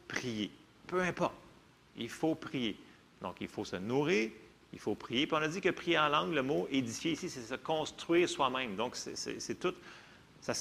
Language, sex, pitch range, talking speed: French, male, 120-170 Hz, 180 wpm